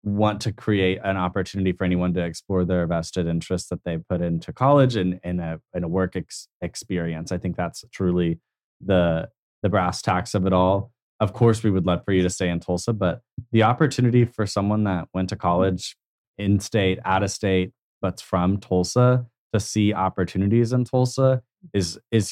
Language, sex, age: English, male, 20-39